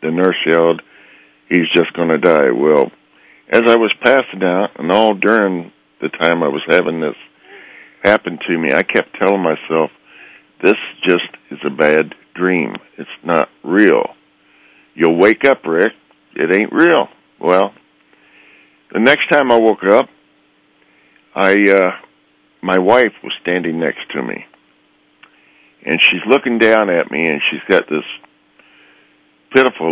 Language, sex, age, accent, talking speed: English, male, 60-79, American, 145 wpm